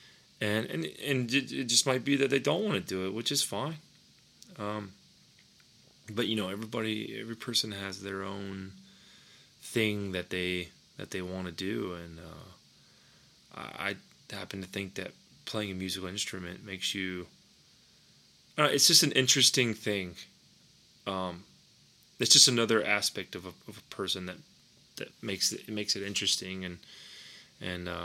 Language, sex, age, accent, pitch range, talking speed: English, male, 20-39, American, 90-115 Hz, 160 wpm